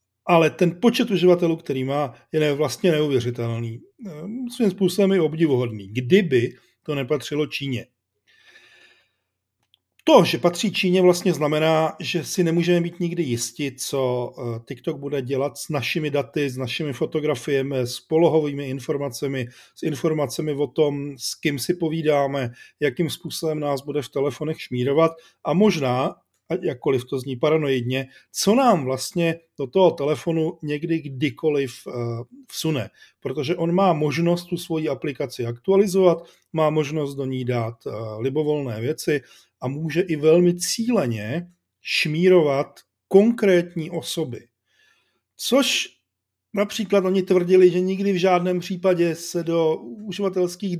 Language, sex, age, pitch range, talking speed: Czech, male, 40-59, 140-180 Hz, 130 wpm